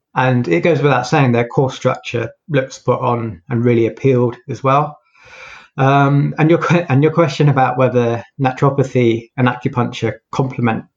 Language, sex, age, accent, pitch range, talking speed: English, male, 20-39, British, 115-135 Hz, 155 wpm